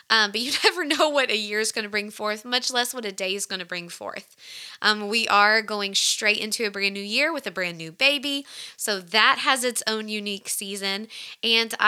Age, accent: 20-39, American